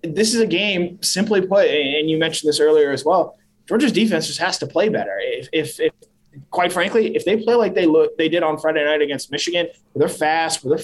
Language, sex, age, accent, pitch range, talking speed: English, male, 20-39, American, 145-180 Hz, 240 wpm